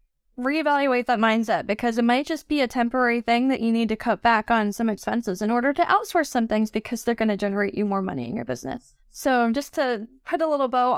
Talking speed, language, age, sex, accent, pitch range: 240 wpm, English, 10-29, female, American, 220-285 Hz